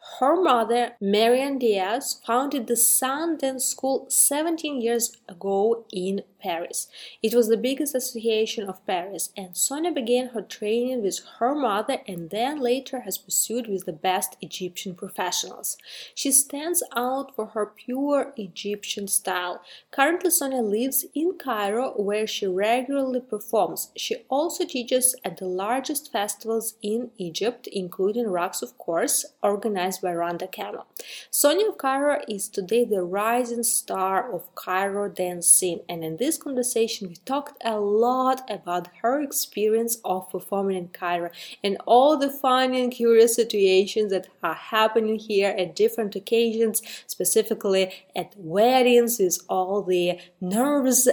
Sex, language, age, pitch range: female, English, 30-49, 195-255 Hz